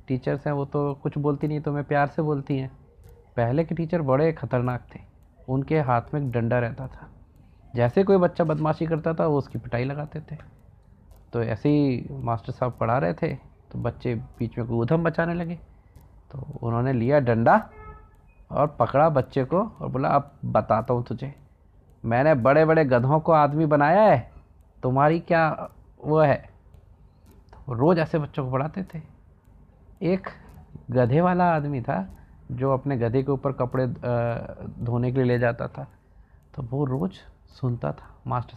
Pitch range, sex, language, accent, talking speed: 115-155 Hz, male, Hindi, native, 170 wpm